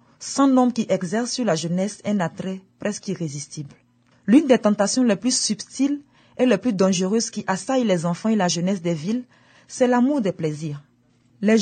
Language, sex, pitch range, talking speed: French, female, 180-240 Hz, 180 wpm